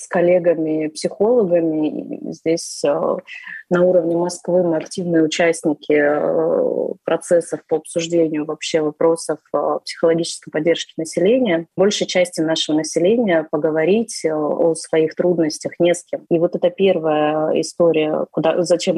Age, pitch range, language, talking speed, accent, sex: 20-39, 160-185 Hz, Russian, 110 wpm, native, female